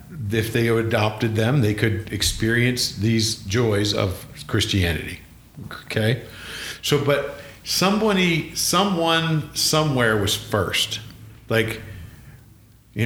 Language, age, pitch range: English, 50-69, 105-135 Hz